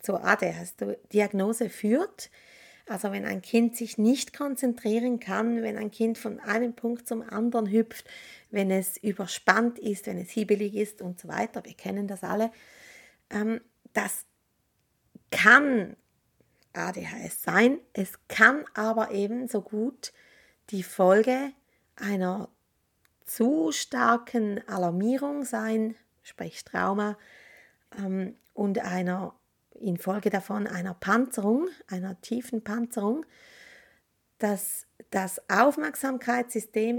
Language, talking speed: German, 105 wpm